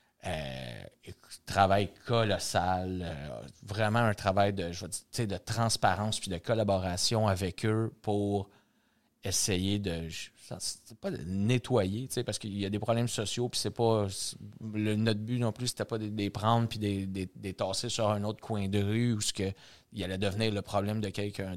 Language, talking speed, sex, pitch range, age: French, 190 wpm, male, 95-110 Hz, 30-49